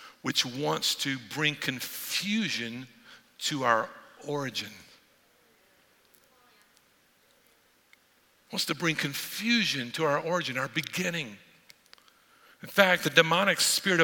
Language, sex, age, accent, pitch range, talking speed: English, male, 50-69, American, 160-220 Hz, 95 wpm